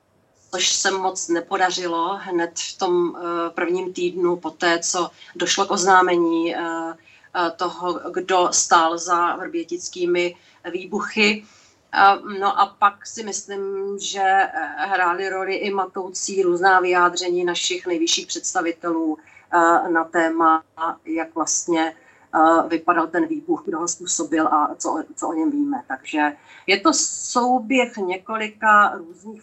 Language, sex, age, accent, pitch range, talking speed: Czech, female, 40-59, native, 175-205 Hz, 115 wpm